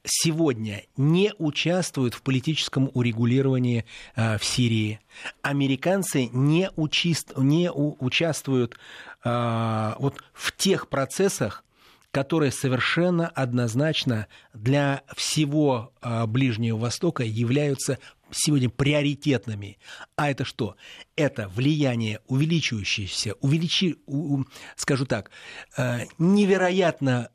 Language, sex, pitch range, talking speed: Russian, male, 115-145 Hz, 75 wpm